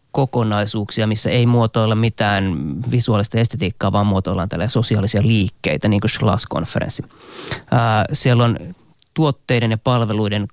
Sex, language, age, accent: male, Finnish, 30-49, native